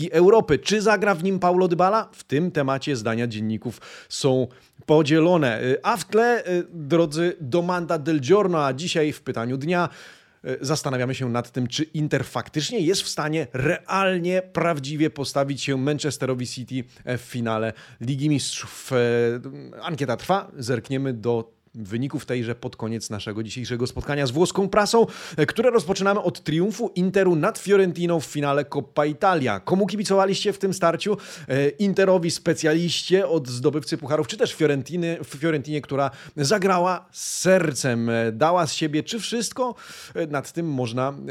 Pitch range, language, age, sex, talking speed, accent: 135-180 Hz, Polish, 30-49, male, 140 wpm, native